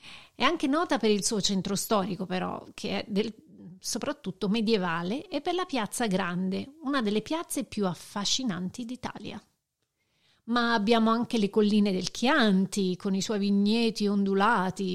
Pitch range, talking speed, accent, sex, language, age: 200-255 Hz, 145 wpm, native, female, Italian, 40-59